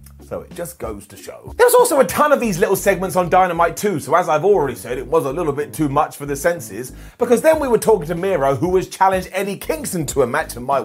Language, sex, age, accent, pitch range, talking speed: English, male, 30-49, British, 150-235 Hz, 270 wpm